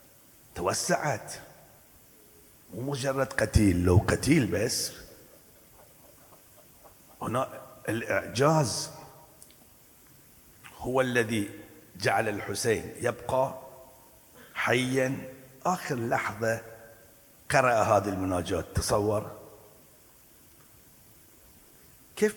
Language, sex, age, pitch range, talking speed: Arabic, male, 50-69, 105-135 Hz, 60 wpm